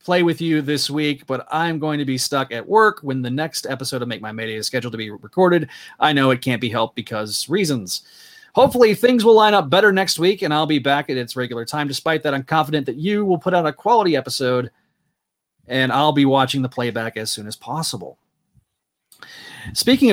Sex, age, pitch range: male, 30-49, 125-160 Hz